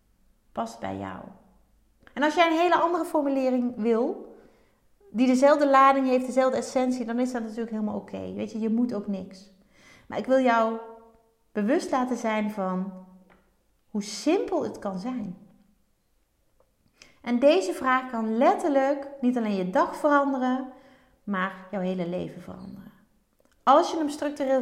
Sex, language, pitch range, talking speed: female, Dutch, 210-280 Hz, 150 wpm